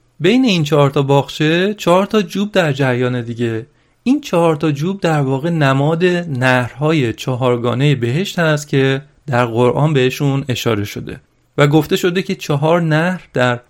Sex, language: male, Persian